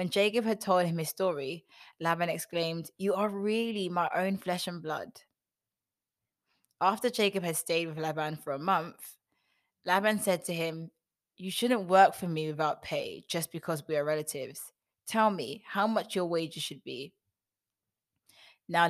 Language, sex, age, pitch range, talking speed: English, female, 20-39, 155-195 Hz, 160 wpm